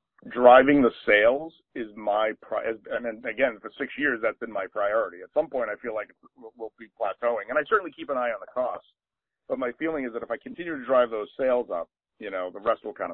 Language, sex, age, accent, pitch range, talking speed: English, male, 40-59, American, 110-175 Hz, 240 wpm